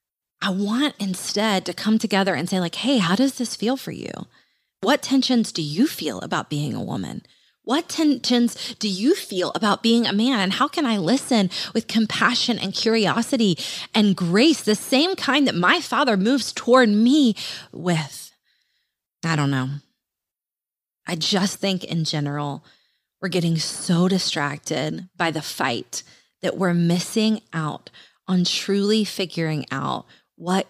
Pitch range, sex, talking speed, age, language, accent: 155-220 Hz, female, 155 wpm, 20-39, English, American